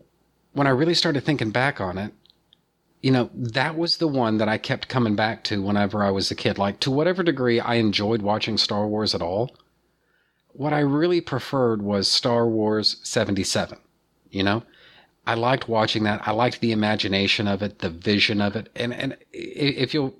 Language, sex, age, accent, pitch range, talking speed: English, male, 40-59, American, 105-130 Hz, 190 wpm